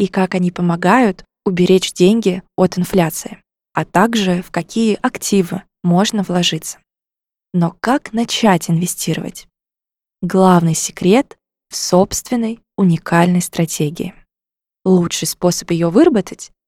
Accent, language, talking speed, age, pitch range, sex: native, Russian, 105 wpm, 20-39, 175-210 Hz, female